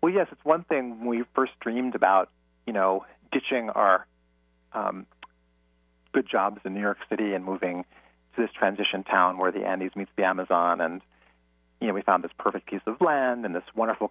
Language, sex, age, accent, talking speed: English, male, 40-59, American, 195 wpm